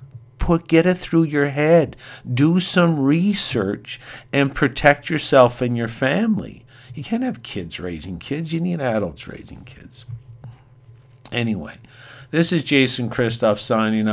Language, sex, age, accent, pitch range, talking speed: English, male, 50-69, American, 105-125 Hz, 130 wpm